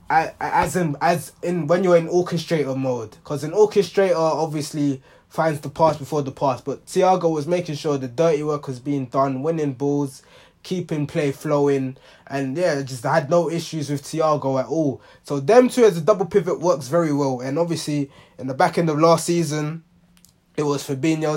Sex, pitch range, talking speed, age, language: male, 135-165 Hz, 190 wpm, 20-39, English